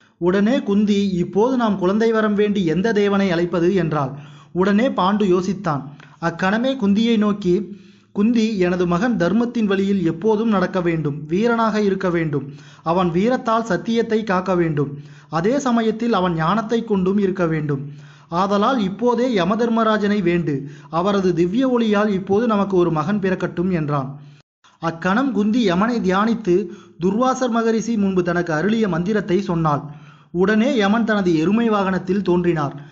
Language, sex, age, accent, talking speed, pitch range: Tamil, male, 30-49, native, 130 wpm, 170-215 Hz